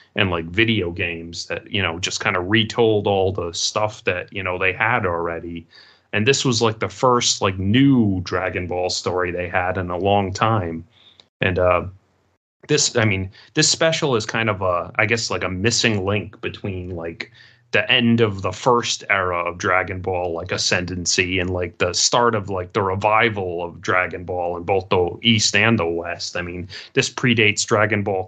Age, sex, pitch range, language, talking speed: 30-49, male, 90-115 Hz, English, 195 wpm